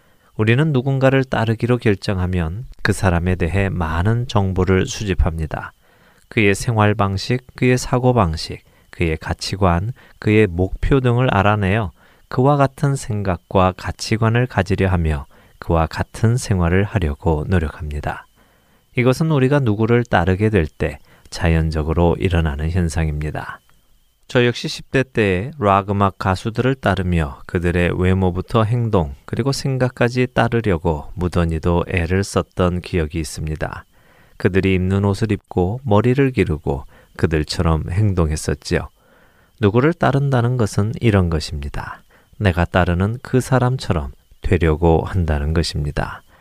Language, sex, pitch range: Korean, male, 85-120 Hz